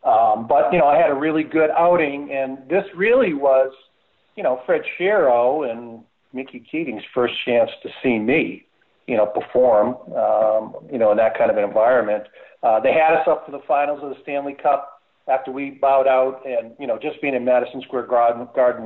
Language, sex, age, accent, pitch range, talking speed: English, male, 50-69, American, 115-140 Hz, 200 wpm